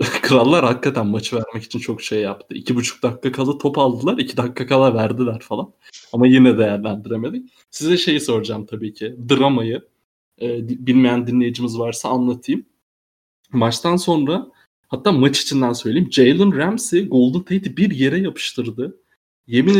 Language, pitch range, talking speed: Turkish, 115-185 Hz, 140 wpm